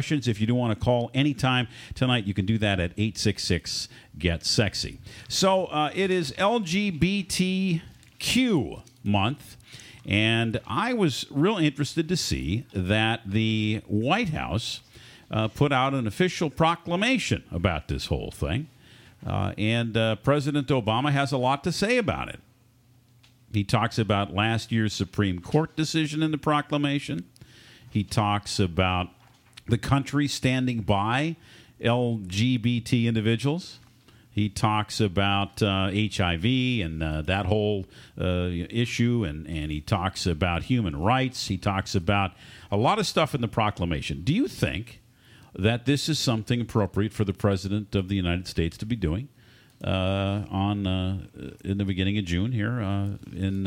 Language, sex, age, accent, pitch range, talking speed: English, male, 50-69, American, 100-130 Hz, 145 wpm